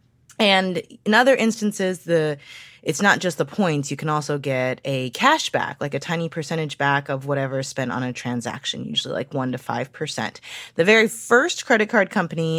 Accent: American